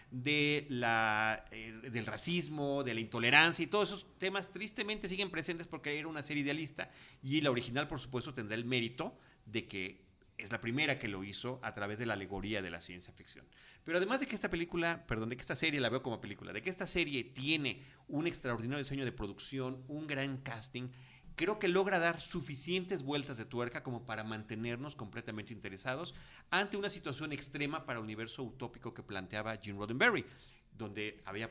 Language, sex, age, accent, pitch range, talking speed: Spanish, male, 40-59, Mexican, 105-140 Hz, 190 wpm